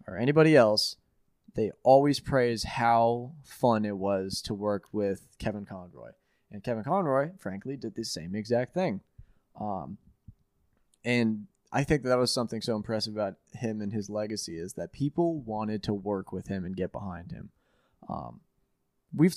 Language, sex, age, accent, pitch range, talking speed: English, male, 20-39, American, 105-130 Hz, 160 wpm